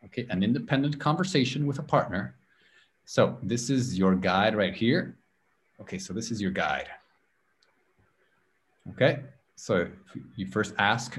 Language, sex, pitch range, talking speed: English, male, 100-150 Hz, 135 wpm